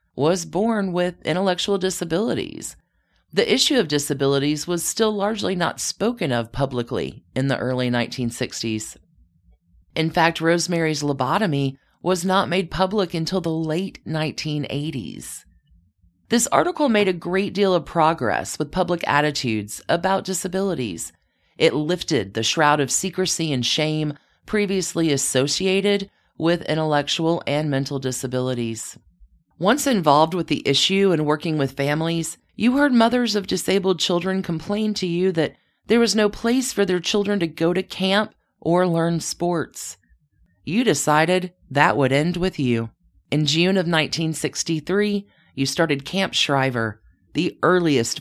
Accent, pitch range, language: American, 130-185 Hz, English